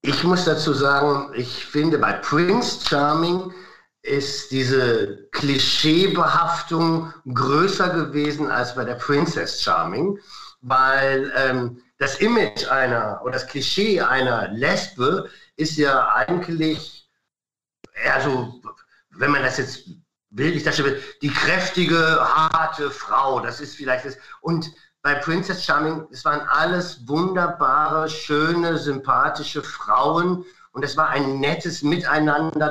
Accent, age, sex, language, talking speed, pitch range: German, 50-69, male, German, 115 wpm, 135-165 Hz